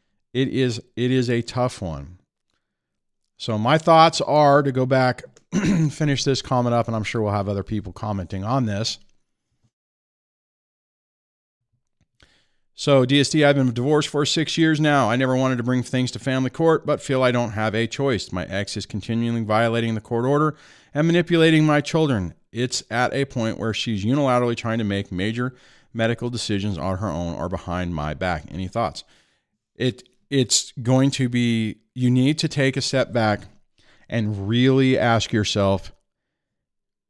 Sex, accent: male, American